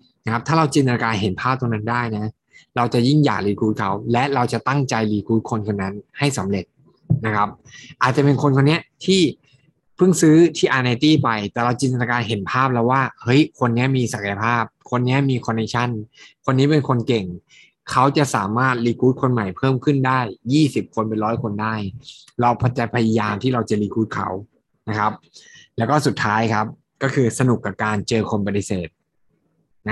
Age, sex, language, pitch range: 20-39, male, Thai, 110-135 Hz